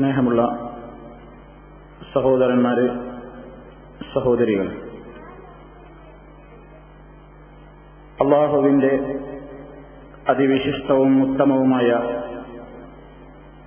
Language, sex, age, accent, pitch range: Malayalam, male, 50-69, native, 130-155 Hz